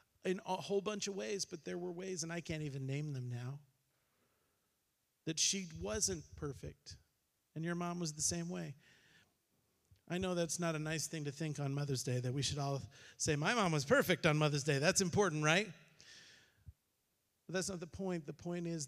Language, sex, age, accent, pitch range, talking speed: English, male, 40-59, American, 150-175 Hz, 200 wpm